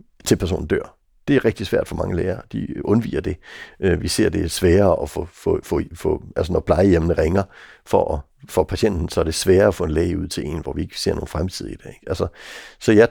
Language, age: Danish, 60-79